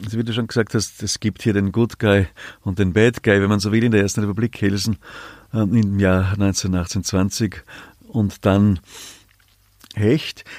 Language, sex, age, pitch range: German, male, 50-69, 95-115 Hz